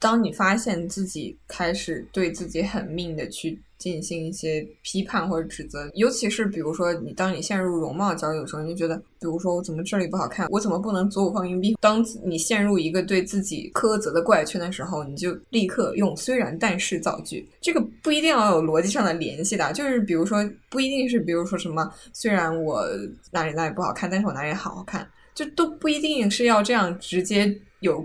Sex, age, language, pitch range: female, 10-29, Chinese, 170-215 Hz